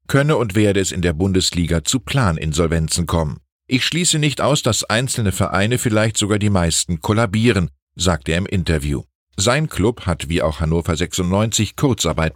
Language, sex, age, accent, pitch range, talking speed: German, male, 50-69, German, 85-120 Hz, 165 wpm